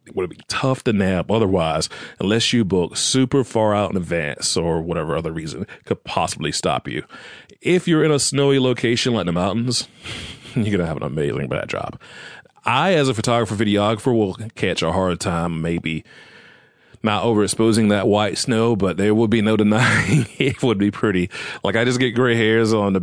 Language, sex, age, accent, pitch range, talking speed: English, male, 40-59, American, 95-115 Hz, 195 wpm